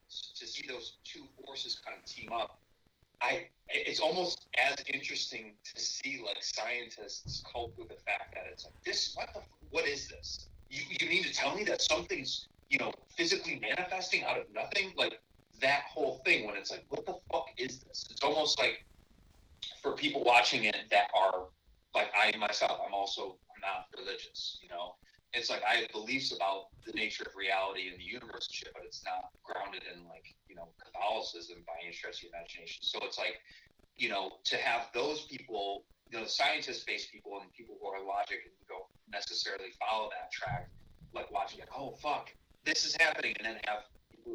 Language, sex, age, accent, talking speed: English, male, 30-49, American, 190 wpm